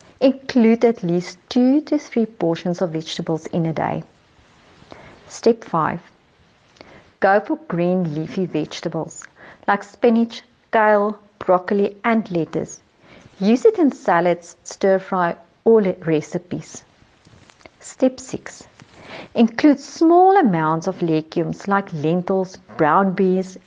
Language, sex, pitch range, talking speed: English, female, 170-230 Hz, 110 wpm